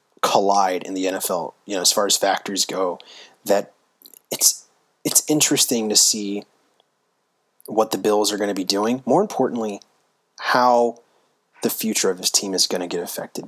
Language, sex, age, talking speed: English, male, 30-49, 170 wpm